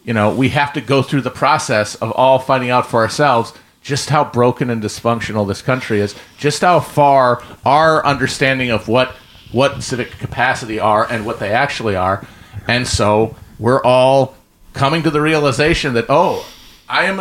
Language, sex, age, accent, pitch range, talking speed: English, male, 40-59, American, 115-145 Hz, 180 wpm